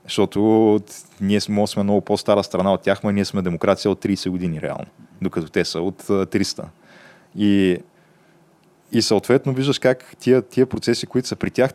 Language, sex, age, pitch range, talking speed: Bulgarian, male, 20-39, 100-125 Hz, 170 wpm